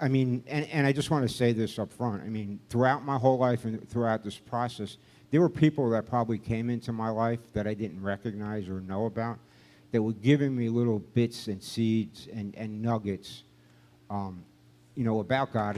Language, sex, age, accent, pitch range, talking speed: English, male, 60-79, American, 95-120 Hz, 205 wpm